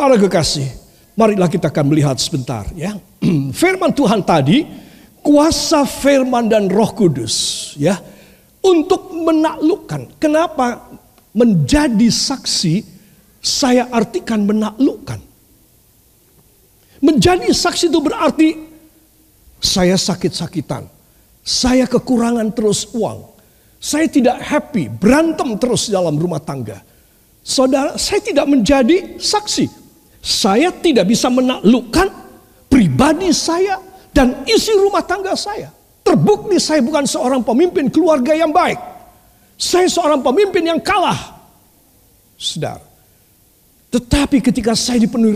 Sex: male